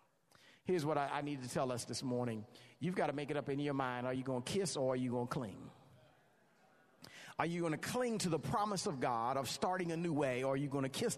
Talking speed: 275 wpm